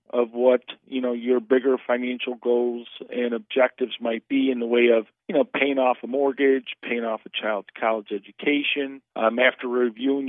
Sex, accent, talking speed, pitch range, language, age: male, American, 180 wpm, 120-135 Hz, English, 40-59